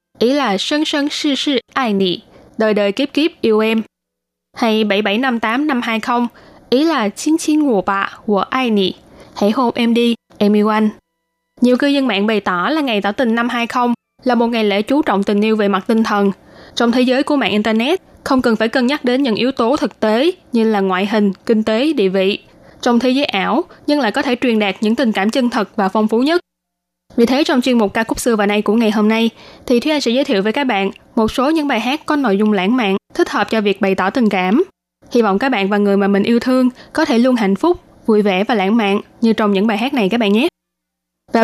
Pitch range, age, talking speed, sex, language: 205-260 Hz, 10-29, 250 wpm, female, Vietnamese